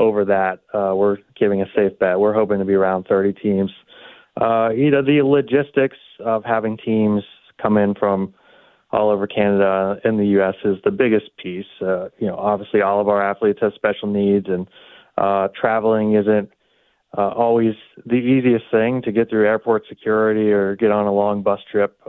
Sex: male